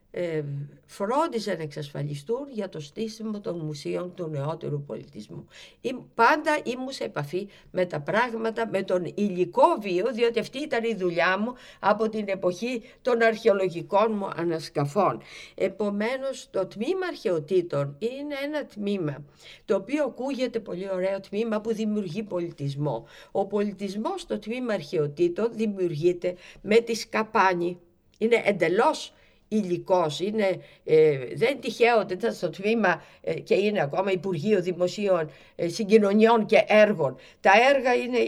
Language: Greek